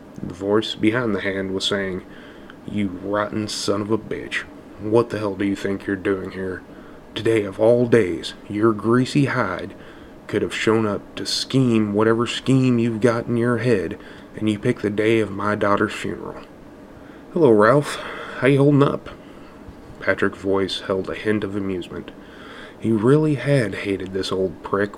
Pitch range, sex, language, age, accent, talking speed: 95-115 Hz, male, English, 20-39, American, 170 wpm